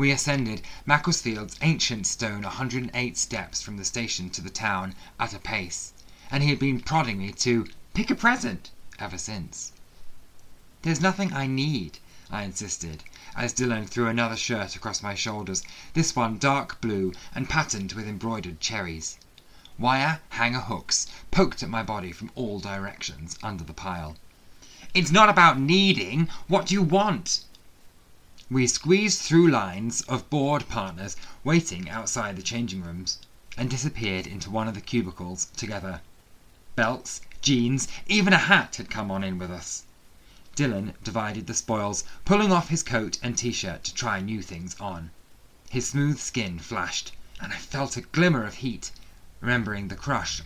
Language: English